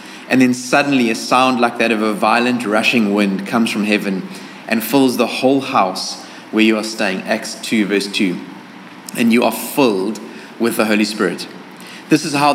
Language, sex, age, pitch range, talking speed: English, male, 30-49, 115-150 Hz, 185 wpm